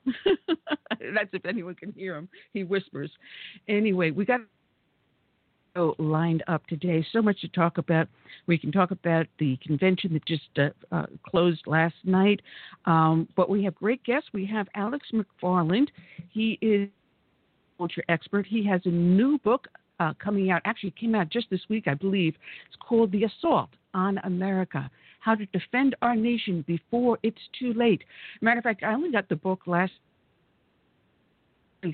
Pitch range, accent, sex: 170-220 Hz, American, female